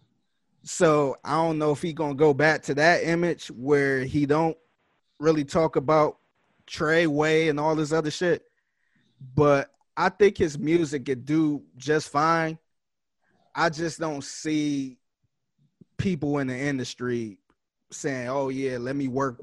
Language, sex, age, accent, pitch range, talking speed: English, male, 20-39, American, 135-155 Hz, 150 wpm